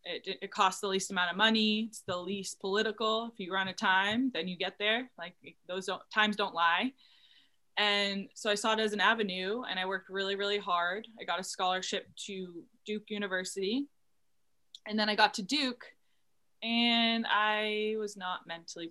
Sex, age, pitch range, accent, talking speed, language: female, 20-39, 170-205 Hz, American, 185 wpm, English